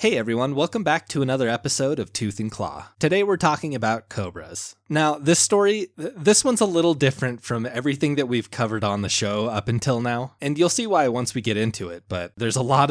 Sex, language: male, English